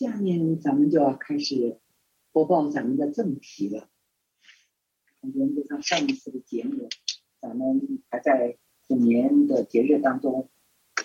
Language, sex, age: Chinese, female, 50-69